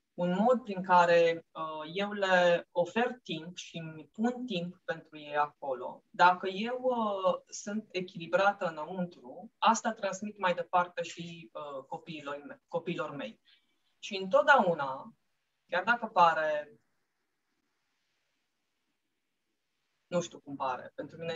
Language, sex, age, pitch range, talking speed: Romanian, female, 20-39, 170-225 Hz, 110 wpm